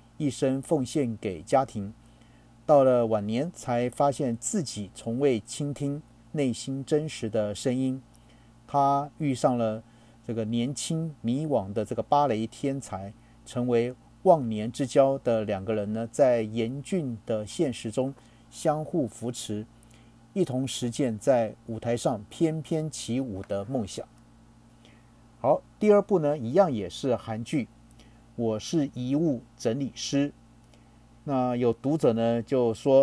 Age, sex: 50-69, male